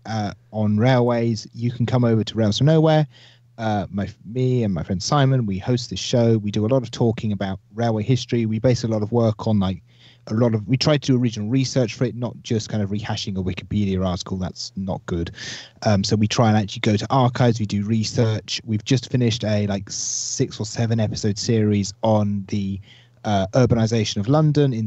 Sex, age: male, 30-49